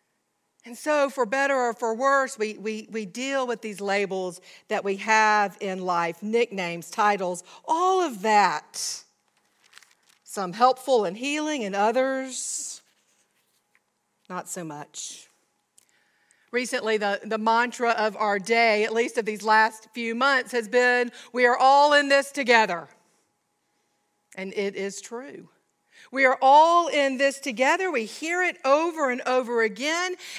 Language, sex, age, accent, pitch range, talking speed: English, female, 50-69, American, 225-300 Hz, 140 wpm